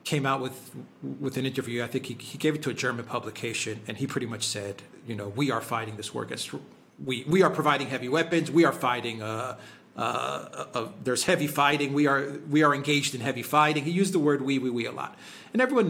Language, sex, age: English, male, 40-59